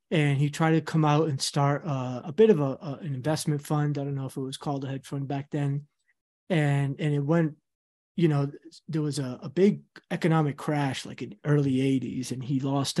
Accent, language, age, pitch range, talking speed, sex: American, English, 30-49, 135-170 Hz, 225 wpm, male